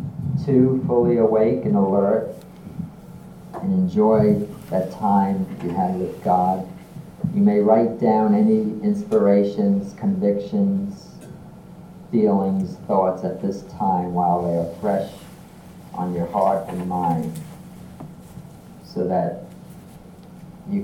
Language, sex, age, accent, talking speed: English, male, 40-59, American, 105 wpm